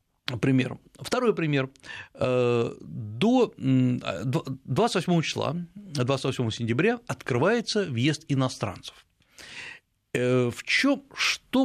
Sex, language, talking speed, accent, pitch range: male, Russian, 70 wpm, native, 120-160 Hz